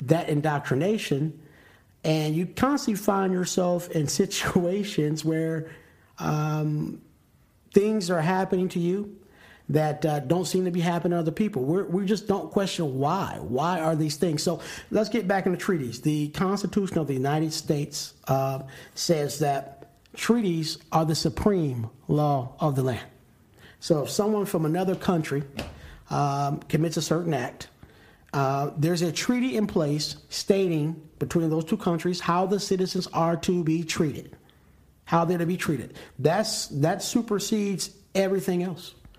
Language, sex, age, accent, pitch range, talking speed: English, male, 50-69, American, 145-185 Hz, 150 wpm